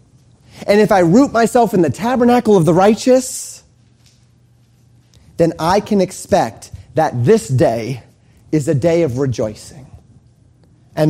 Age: 30-49